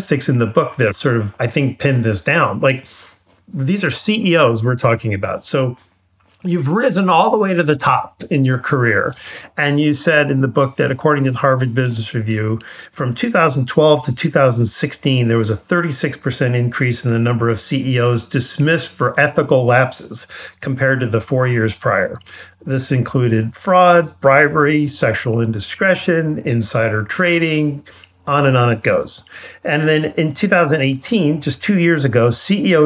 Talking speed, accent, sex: 165 wpm, American, male